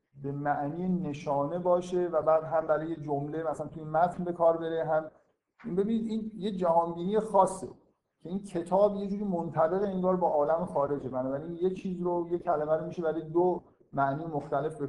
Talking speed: 185 wpm